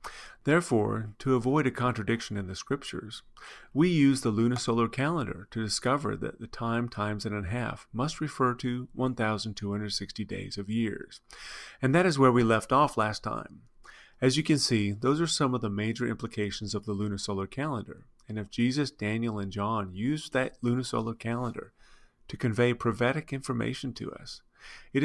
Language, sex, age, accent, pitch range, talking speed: English, male, 40-59, American, 105-130 Hz, 170 wpm